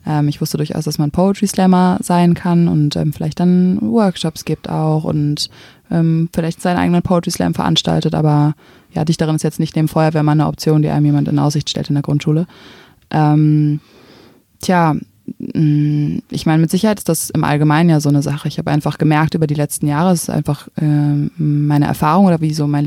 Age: 20-39